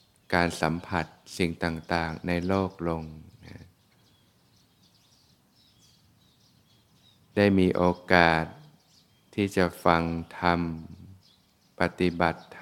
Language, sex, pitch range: Thai, male, 85-95 Hz